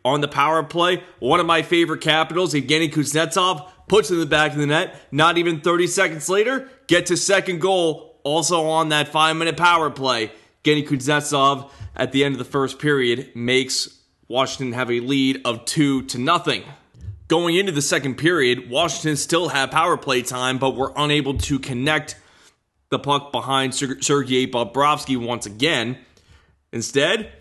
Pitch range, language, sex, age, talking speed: 135-165 Hz, English, male, 30-49, 165 wpm